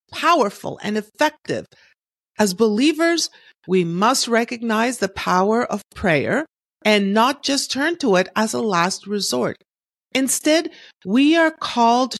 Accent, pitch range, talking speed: American, 180-250 Hz, 130 wpm